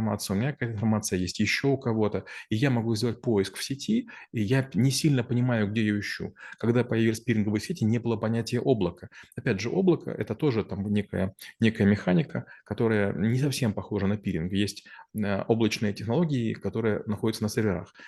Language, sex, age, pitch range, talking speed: Russian, male, 20-39, 105-125 Hz, 185 wpm